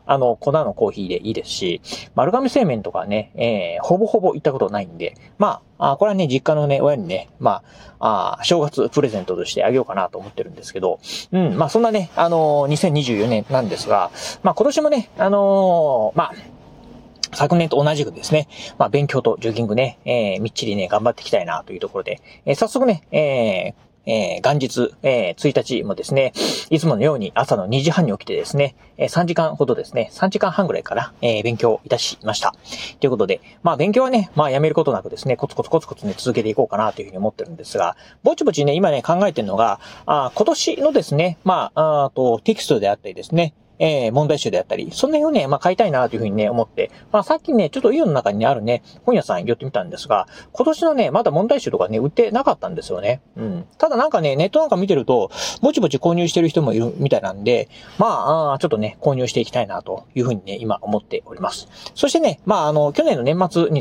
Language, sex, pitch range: Japanese, male, 140-225 Hz